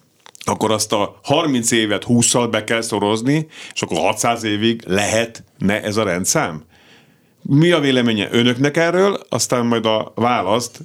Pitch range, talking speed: 100-130 Hz, 145 wpm